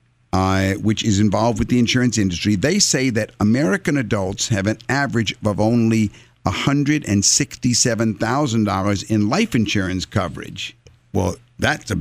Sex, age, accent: male, 50-69, American